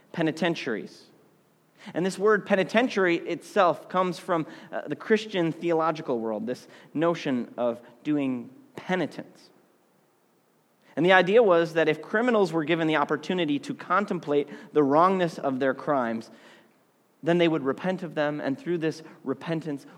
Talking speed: 140 wpm